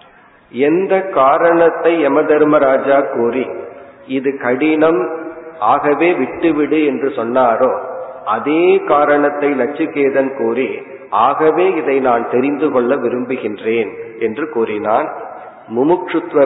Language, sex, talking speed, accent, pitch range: Tamil, male, 80 wpm, native, 135-180 Hz